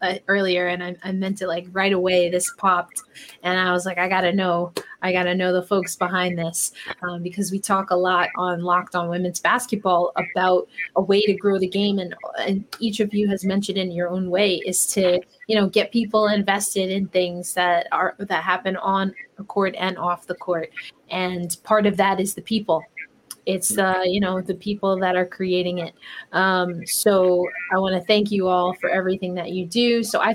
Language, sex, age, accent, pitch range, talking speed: English, female, 20-39, American, 180-205 Hz, 210 wpm